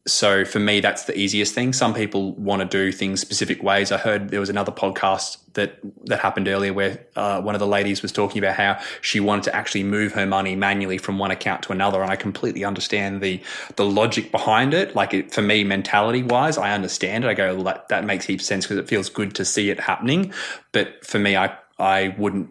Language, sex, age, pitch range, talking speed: English, male, 20-39, 95-105 Hz, 235 wpm